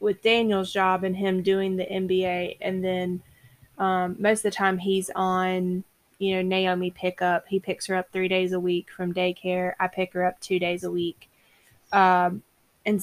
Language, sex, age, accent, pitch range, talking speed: English, female, 20-39, American, 180-190 Hz, 195 wpm